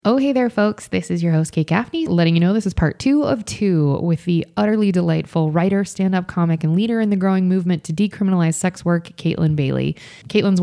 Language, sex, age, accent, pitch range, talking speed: English, female, 20-39, American, 160-185 Hz, 220 wpm